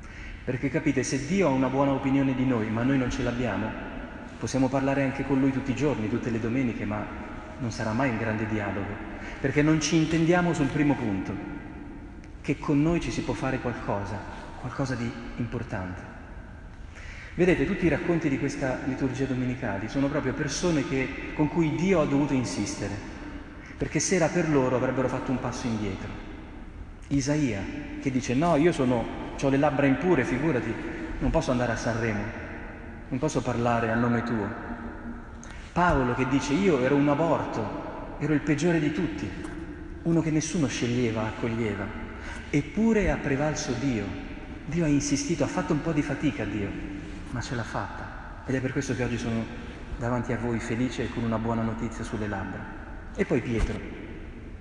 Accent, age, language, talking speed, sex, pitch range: native, 40-59, Italian, 175 wpm, male, 110-140 Hz